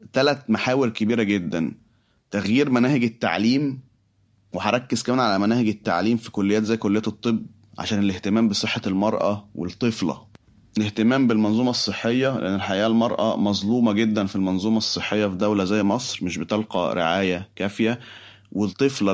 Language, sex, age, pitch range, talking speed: Arabic, male, 30-49, 100-115 Hz, 130 wpm